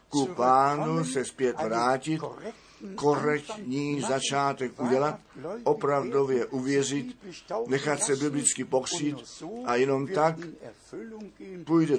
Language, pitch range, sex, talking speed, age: Czech, 130-160 Hz, male, 90 wpm, 50-69